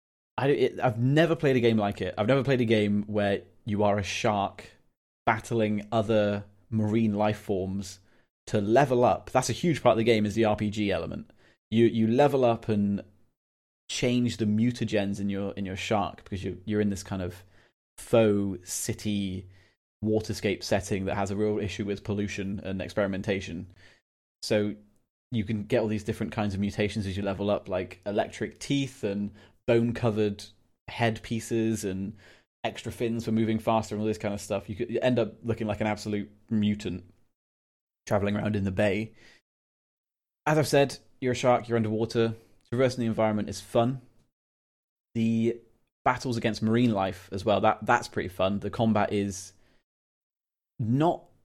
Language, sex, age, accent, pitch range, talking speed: English, male, 20-39, British, 100-115 Hz, 170 wpm